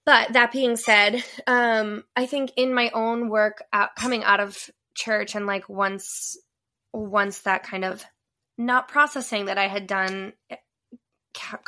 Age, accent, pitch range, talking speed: 20-39, American, 195-245 Hz, 155 wpm